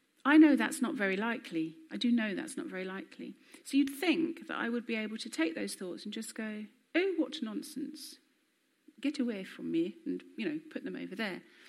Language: English